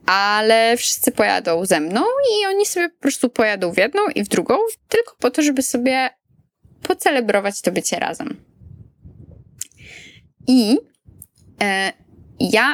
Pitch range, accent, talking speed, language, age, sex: 190-275 Hz, native, 125 wpm, Polish, 20-39, female